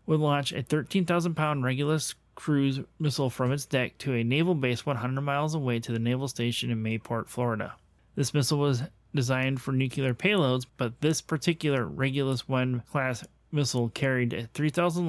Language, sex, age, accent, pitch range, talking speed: English, male, 30-49, American, 125-150 Hz, 160 wpm